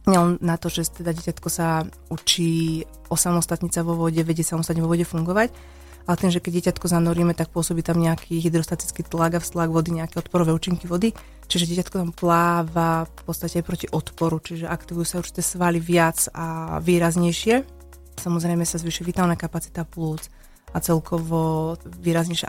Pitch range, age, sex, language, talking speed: 165-180 Hz, 30-49, female, Slovak, 160 wpm